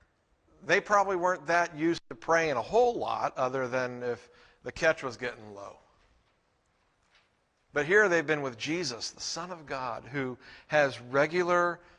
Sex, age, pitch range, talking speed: male, 50-69, 130-170 Hz, 155 wpm